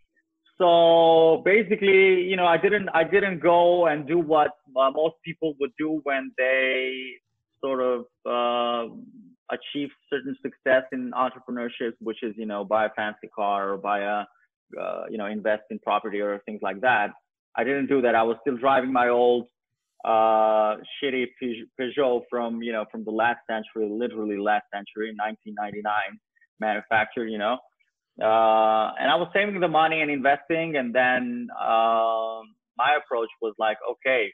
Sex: male